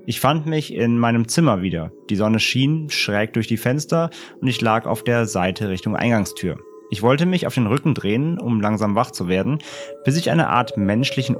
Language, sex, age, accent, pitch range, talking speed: German, male, 30-49, German, 110-130 Hz, 205 wpm